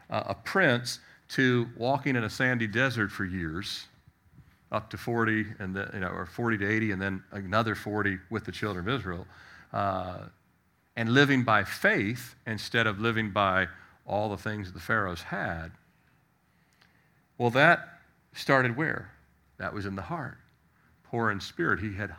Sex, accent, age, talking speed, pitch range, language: male, American, 50-69, 165 wpm, 100-125 Hz, English